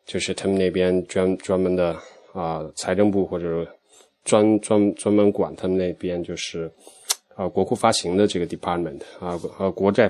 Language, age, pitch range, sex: Chinese, 20-39, 90-105 Hz, male